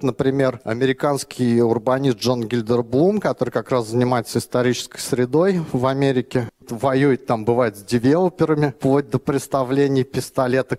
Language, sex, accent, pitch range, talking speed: Russian, male, native, 120-140 Hz, 120 wpm